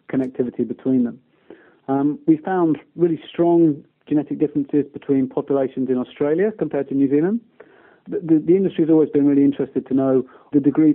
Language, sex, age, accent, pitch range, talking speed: English, male, 30-49, British, 130-150 Hz, 170 wpm